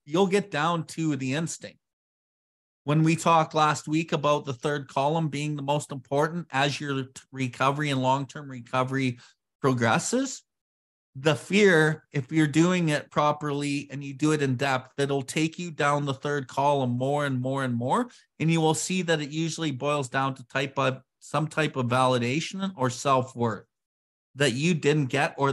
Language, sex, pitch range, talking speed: English, male, 125-155 Hz, 175 wpm